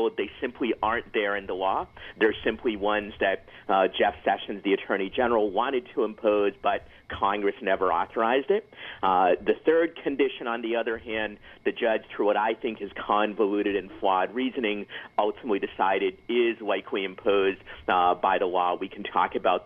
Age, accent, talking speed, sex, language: 40-59, American, 175 wpm, male, English